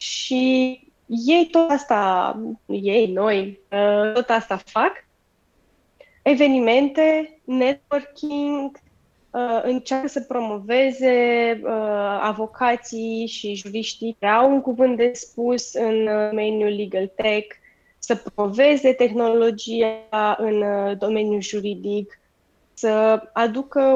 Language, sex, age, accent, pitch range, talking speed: Romanian, female, 20-39, native, 210-260 Hz, 85 wpm